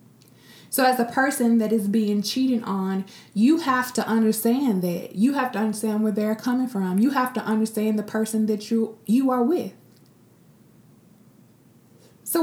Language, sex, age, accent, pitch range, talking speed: English, female, 20-39, American, 185-235 Hz, 165 wpm